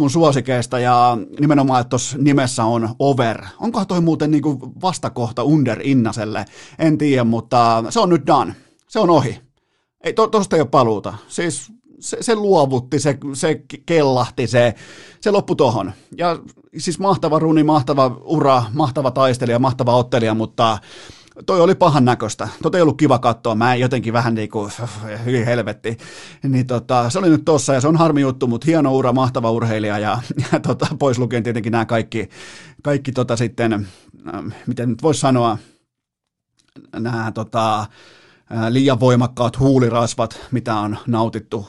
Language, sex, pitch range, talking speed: Finnish, male, 115-150 Hz, 155 wpm